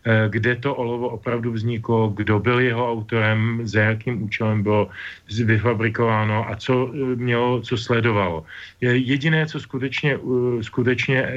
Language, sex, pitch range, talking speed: Slovak, male, 105-120 Hz, 120 wpm